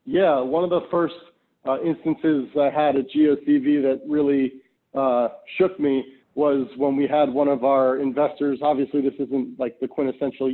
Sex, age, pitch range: male, 40-59, 135-155 Hz